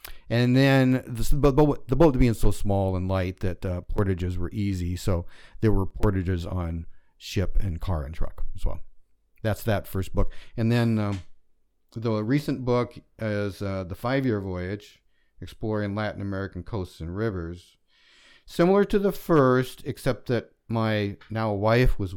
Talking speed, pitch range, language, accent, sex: 155 wpm, 90-115 Hz, English, American, male